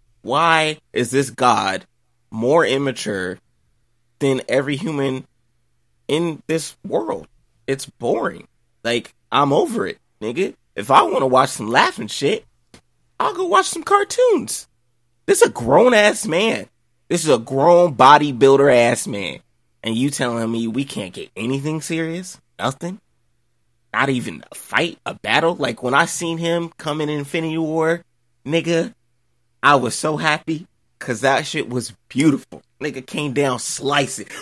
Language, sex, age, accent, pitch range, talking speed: English, male, 20-39, American, 120-155 Hz, 145 wpm